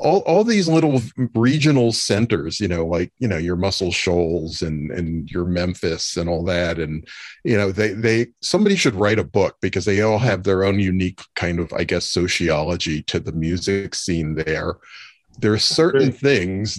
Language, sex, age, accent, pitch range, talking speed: English, male, 40-59, American, 90-110 Hz, 185 wpm